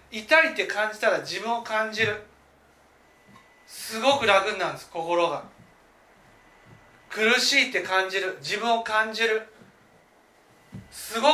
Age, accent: 40-59, native